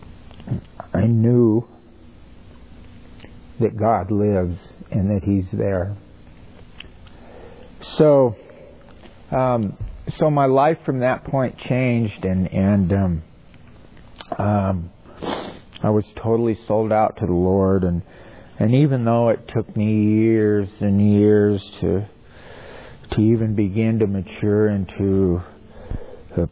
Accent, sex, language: American, male, English